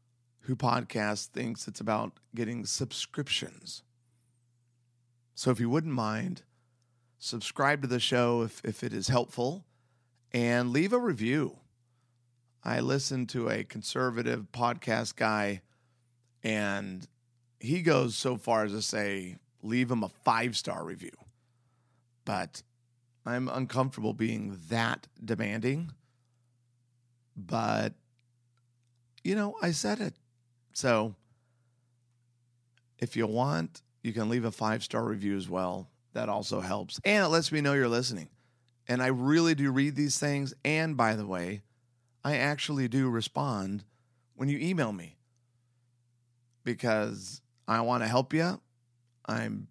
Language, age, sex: English, 30-49, male